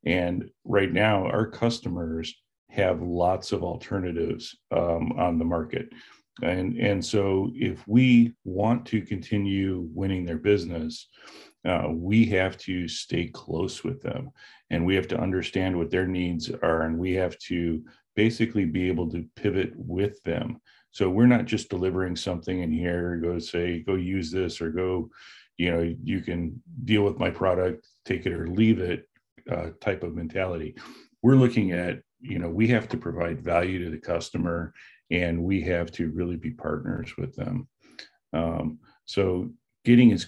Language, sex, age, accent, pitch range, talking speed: English, male, 40-59, American, 85-105 Hz, 165 wpm